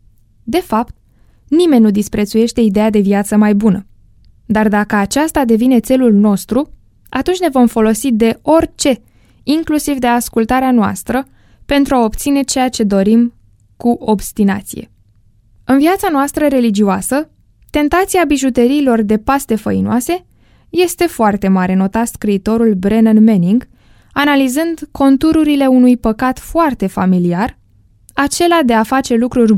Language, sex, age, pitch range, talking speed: Romanian, female, 10-29, 195-260 Hz, 125 wpm